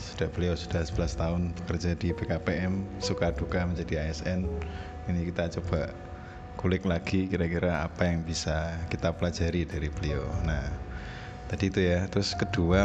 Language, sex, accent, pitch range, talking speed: Indonesian, male, native, 85-100 Hz, 145 wpm